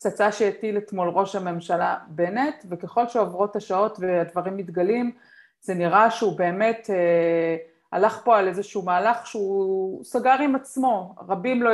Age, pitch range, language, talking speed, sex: 30-49, 190-245 Hz, Hebrew, 140 wpm, female